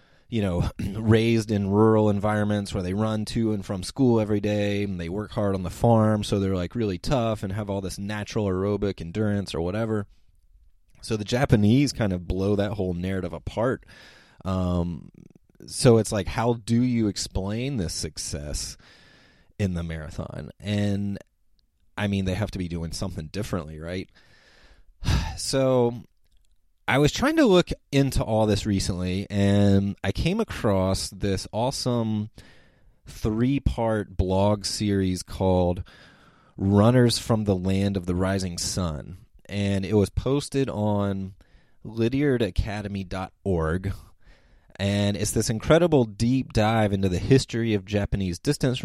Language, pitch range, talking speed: English, 95-110 Hz, 140 wpm